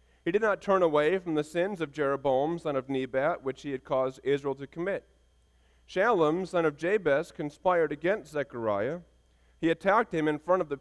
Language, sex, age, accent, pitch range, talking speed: English, male, 30-49, American, 125-160 Hz, 190 wpm